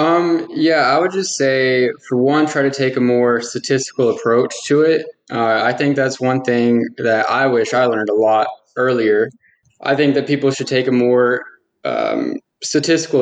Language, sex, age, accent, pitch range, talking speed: English, male, 10-29, American, 115-140 Hz, 185 wpm